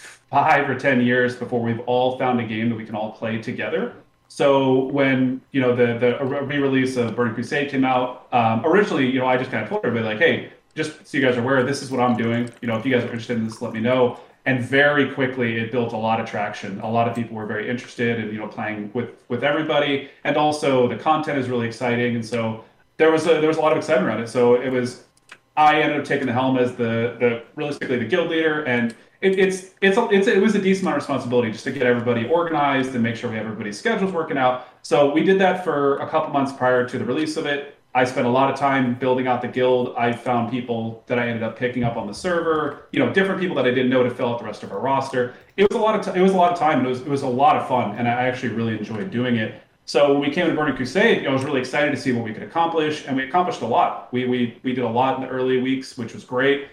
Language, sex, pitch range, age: English, male, 120-145 Hz, 30-49